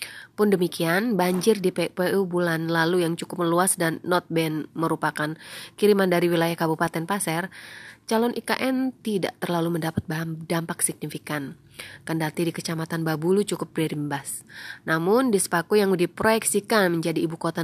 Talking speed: 135 wpm